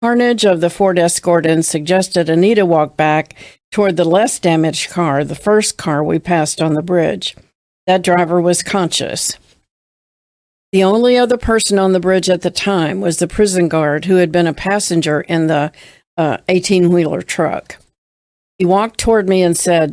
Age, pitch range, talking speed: 50-69, 165-195 Hz, 170 wpm